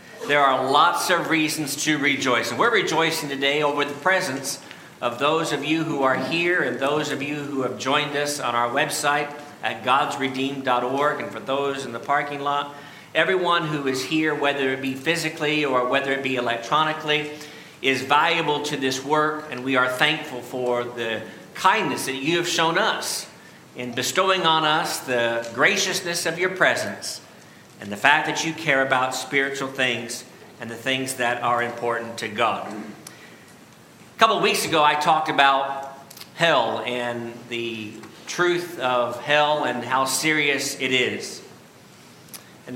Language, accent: English, American